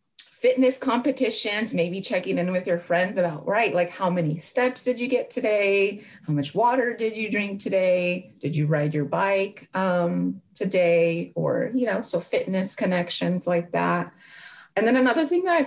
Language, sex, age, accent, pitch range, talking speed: English, female, 30-49, American, 160-210 Hz, 175 wpm